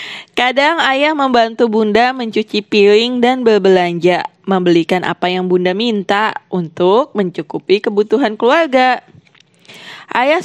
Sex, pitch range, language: female, 190-250 Hz, Indonesian